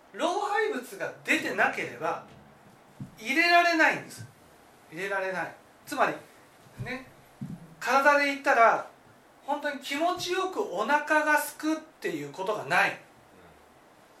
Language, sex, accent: Japanese, male, native